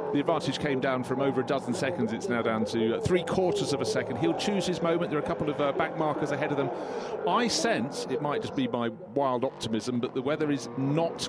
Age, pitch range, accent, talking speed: 40-59, 135-175 Hz, British, 250 wpm